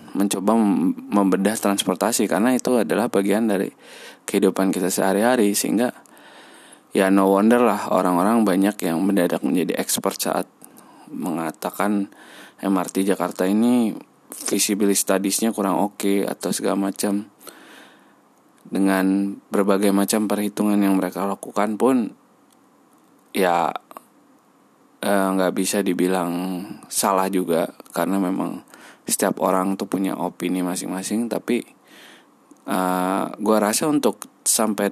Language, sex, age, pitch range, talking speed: Indonesian, male, 20-39, 95-105 Hz, 110 wpm